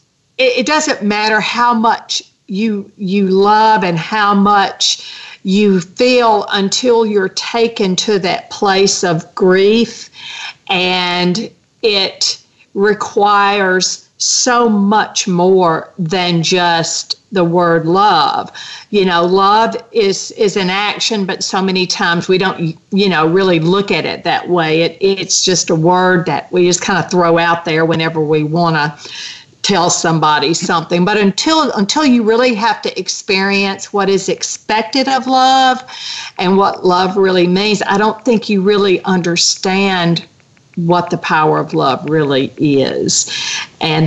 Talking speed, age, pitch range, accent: 145 wpm, 50-69, 170-215 Hz, American